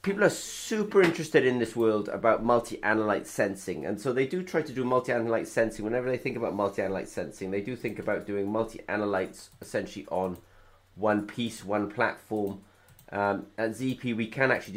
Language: English